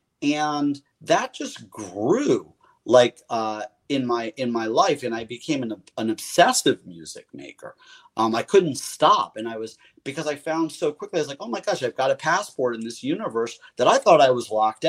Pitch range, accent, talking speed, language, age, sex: 115-175 Hz, American, 200 wpm, English, 40-59, male